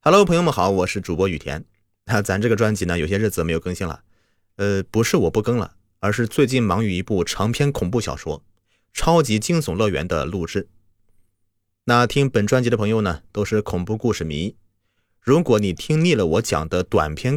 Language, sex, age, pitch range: Chinese, male, 30-49, 95-120 Hz